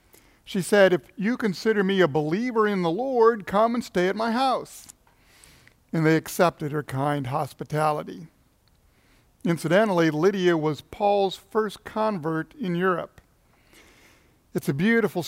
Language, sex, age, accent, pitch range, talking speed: English, male, 50-69, American, 150-195 Hz, 135 wpm